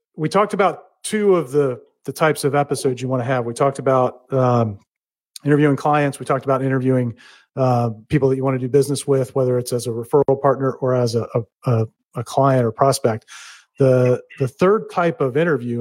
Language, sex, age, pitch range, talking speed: English, male, 40-59, 130-155 Hz, 200 wpm